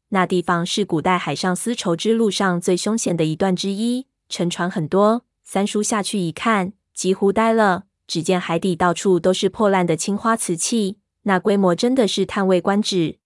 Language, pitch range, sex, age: Chinese, 175-215 Hz, female, 20-39